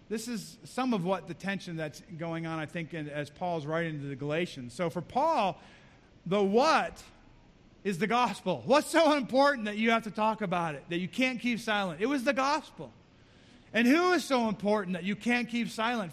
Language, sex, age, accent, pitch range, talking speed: English, male, 40-59, American, 195-265 Hz, 205 wpm